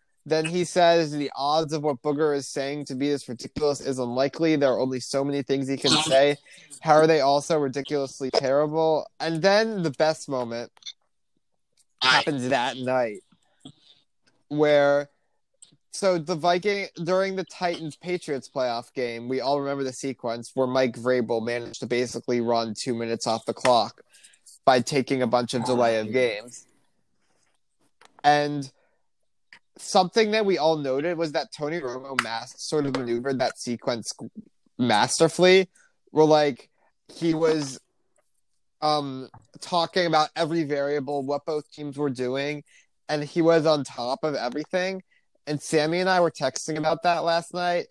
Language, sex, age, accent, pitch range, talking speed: English, male, 20-39, American, 130-160 Hz, 150 wpm